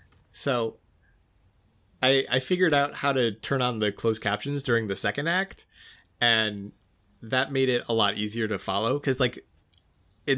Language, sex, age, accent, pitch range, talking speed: English, male, 20-39, American, 100-130 Hz, 160 wpm